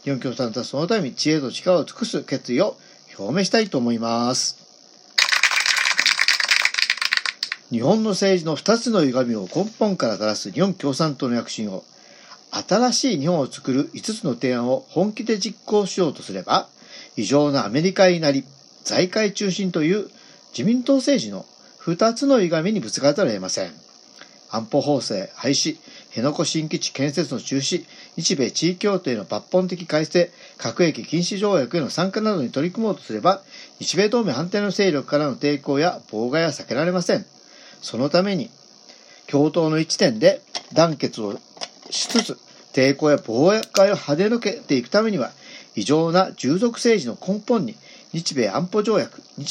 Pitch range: 145-210 Hz